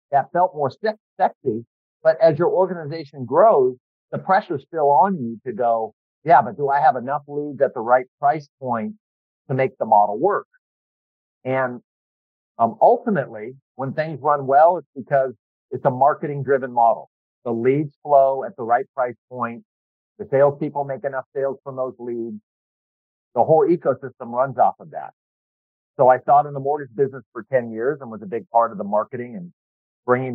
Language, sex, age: English, male, 50-69